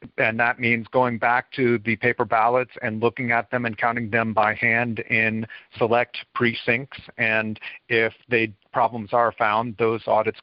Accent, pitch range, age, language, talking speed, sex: American, 110-120 Hz, 50-69, English, 165 wpm, male